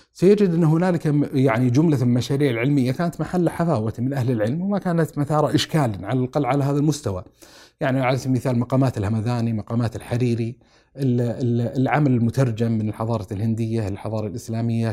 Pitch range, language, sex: 115-140 Hz, Arabic, male